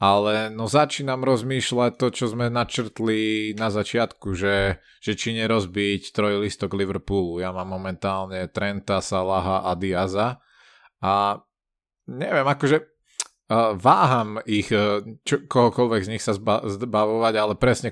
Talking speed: 125 wpm